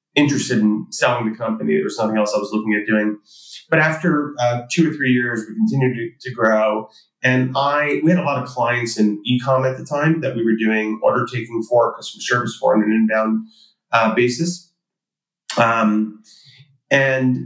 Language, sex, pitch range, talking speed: English, male, 115-150 Hz, 190 wpm